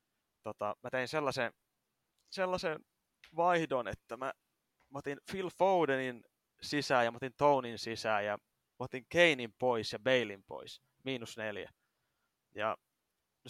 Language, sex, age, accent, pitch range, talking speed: Finnish, male, 20-39, native, 110-140 Hz, 135 wpm